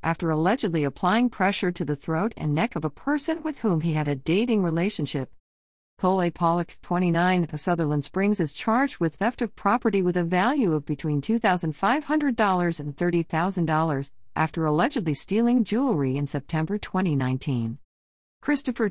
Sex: female